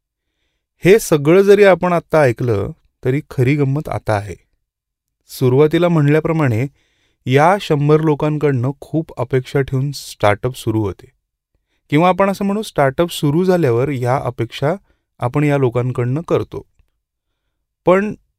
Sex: male